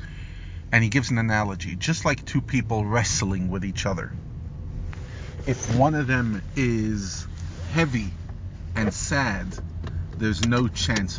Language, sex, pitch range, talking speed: English, male, 90-115 Hz, 130 wpm